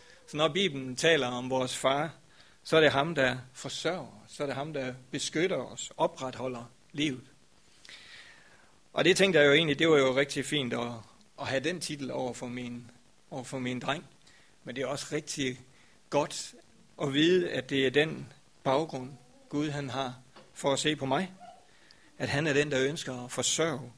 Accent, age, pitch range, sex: native, 60-79, 130-150 Hz, male